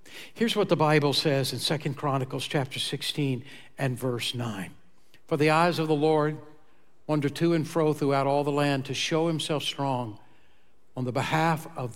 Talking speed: 175 wpm